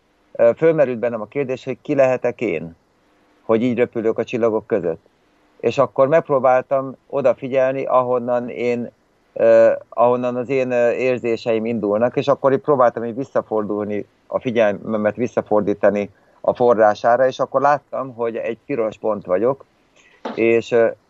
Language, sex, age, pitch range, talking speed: Slovak, male, 50-69, 115-135 Hz, 125 wpm